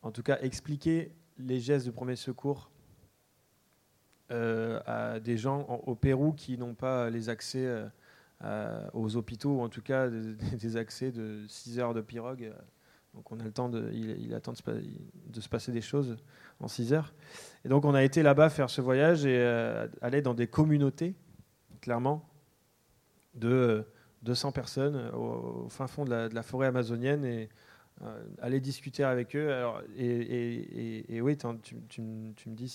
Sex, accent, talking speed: male, French, 190 wpm